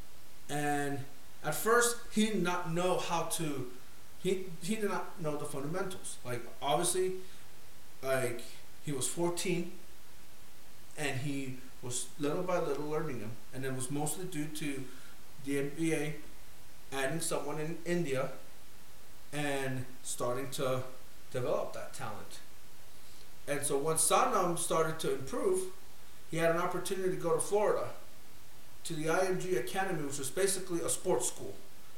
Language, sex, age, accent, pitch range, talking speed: English, male, 30-49, American, 140-175 Hz, 135 wpm